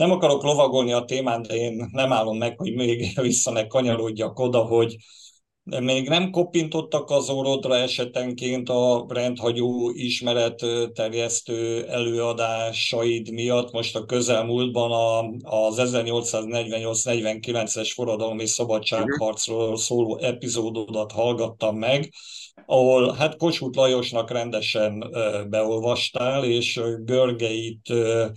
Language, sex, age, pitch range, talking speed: Hungarian, male, 50-69, 115-125 Hz, 100 wpm